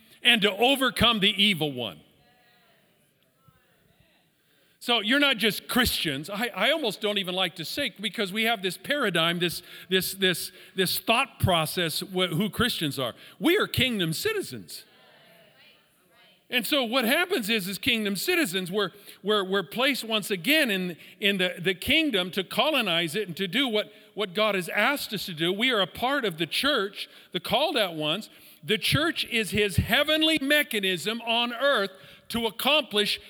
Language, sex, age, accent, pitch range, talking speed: English, male, 50-69, American, 170-230 Hz, 165 wpm